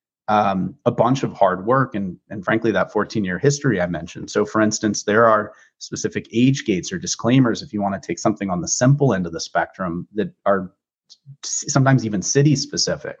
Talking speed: 190 wpm